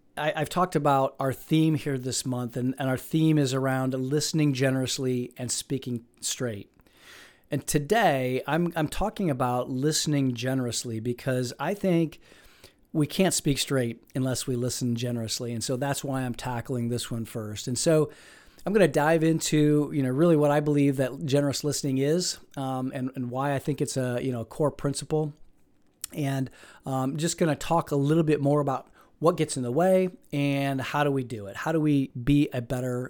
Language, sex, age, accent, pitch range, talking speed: English, male, 40-59, American, 130-155 Hz, 195 wpm